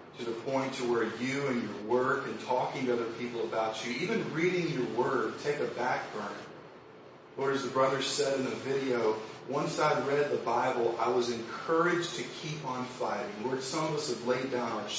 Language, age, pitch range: English, 40-59, 120-165 Hz